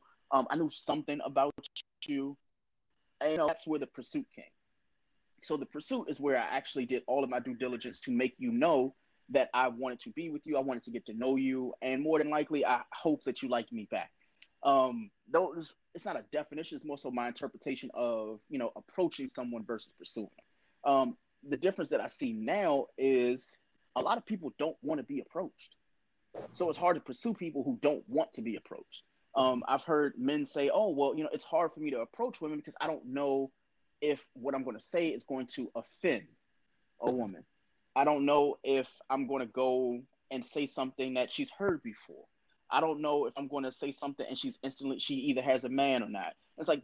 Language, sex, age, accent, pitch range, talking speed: English, male, 30-49, American, 130-165 Hz, 220 wpm